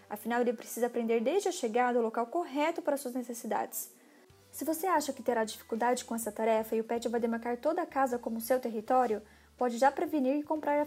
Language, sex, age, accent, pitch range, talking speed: Portuguese, female, 20-39, Brazilian, 235-290 Hz, 210 wpm